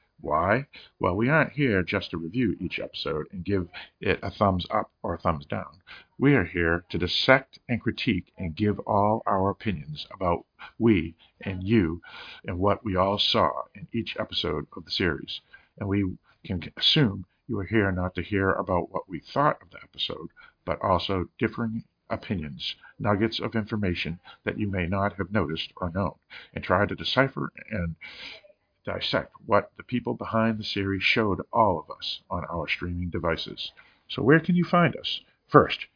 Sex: male